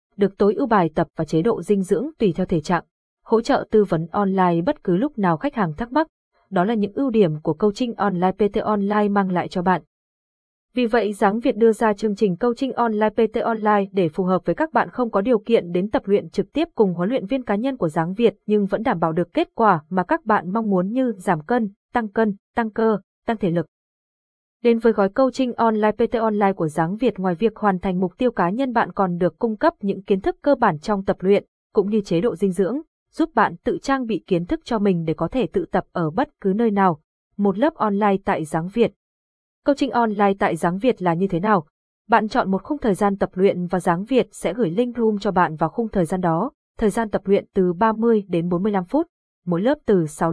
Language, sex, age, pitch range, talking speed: Vietnamese, female, 20-39, 185-235 Hz, 245 wpm